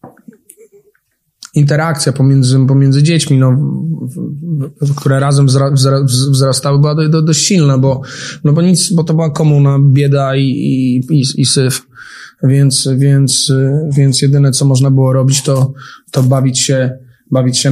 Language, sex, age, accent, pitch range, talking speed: Polish, male, 20-39, native, 130-145 Hz, 150 wpm